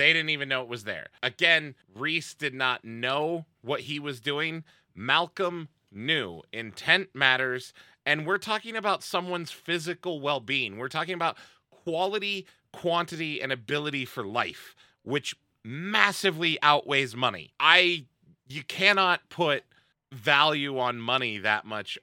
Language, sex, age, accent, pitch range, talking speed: English, male, 30-49, American, 115-150 Hz, 135 wpm